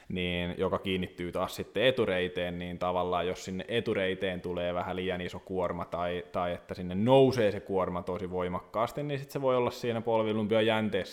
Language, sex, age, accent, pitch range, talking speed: Finnish, male, 20-39, native, 90-100 Hz, 175 wpm